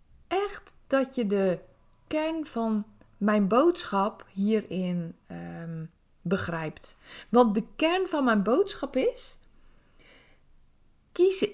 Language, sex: Dutch, female